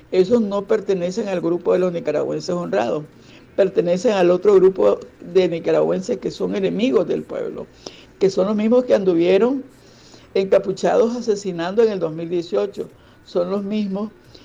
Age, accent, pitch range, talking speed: 60-79, American, 180-210 Hz, 140 wpm